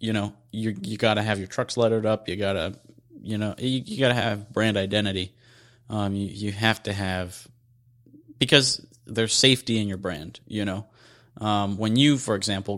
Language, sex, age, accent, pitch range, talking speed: English, male, 30-49, American, 105-120 Hz, 195 wpm